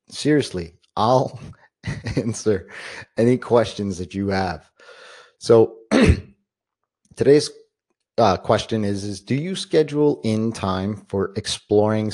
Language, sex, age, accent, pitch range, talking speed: English, male, 30-49, American, 95-120 Hz, 105 wpm